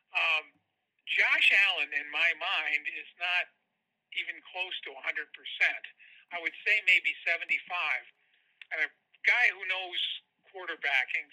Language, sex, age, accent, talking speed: English, male, 50-69, American, 120 wpm